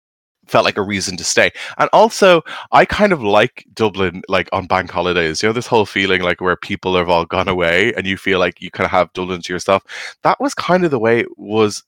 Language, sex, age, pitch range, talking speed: English, male, 20-39, 90-110 Hz, 240 wpm